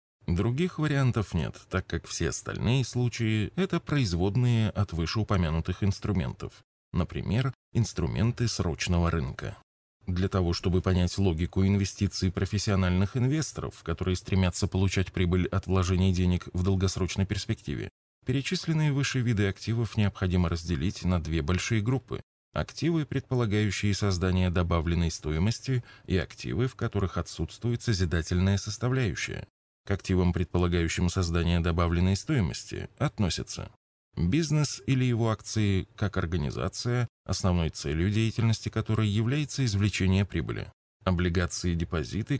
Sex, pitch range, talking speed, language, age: male, 90-115 Hz, 115 wpm, Russian, 20-39